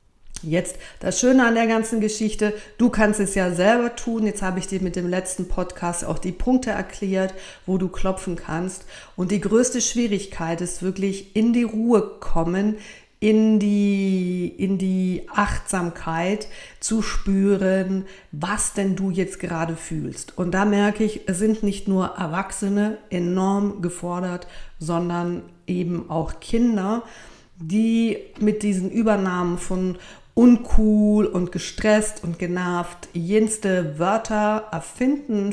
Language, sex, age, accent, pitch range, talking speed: German, female, 50-69, German, 180-215 Hz, 135 wpm